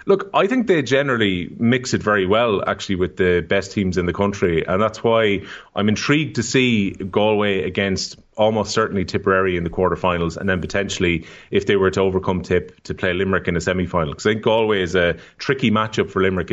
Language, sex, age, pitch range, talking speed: English, male, 30-49, 95-110 Hz, 205 wpm